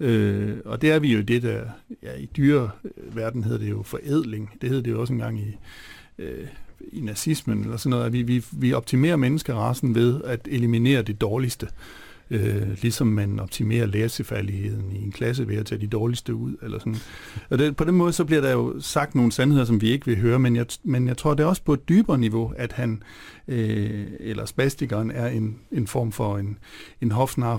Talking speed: 210 wpm